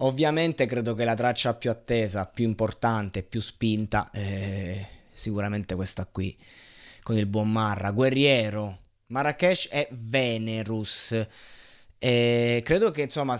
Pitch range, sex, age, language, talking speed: 115-145 Hz, male, 20-39, Italian, 125 wpm